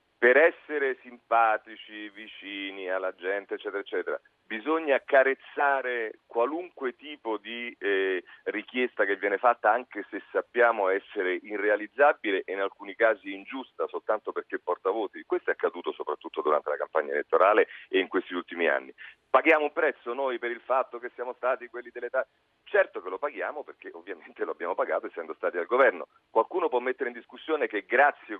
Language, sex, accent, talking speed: Italian, male, native, 165 wpm